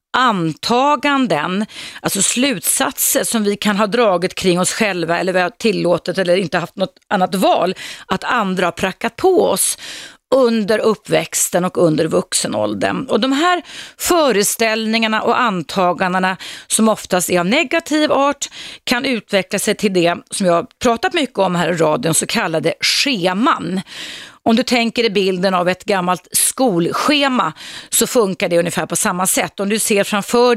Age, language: 30-49, Swedish